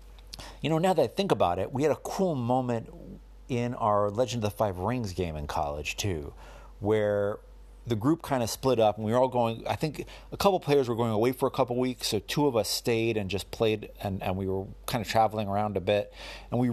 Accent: American